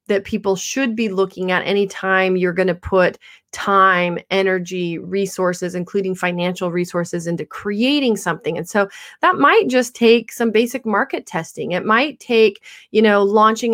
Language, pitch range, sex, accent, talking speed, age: English, 195-245 Hz, female, American, 155 wpm, 30-49